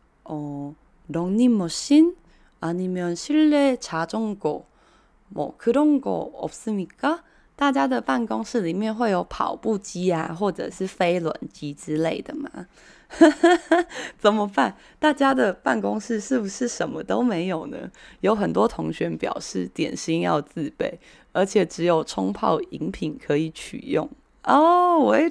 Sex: female